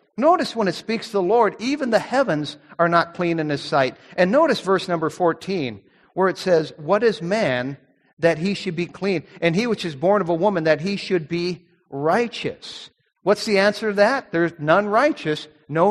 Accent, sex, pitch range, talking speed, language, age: American, male, 155-205 Hz, 205 wpm, English, 50-69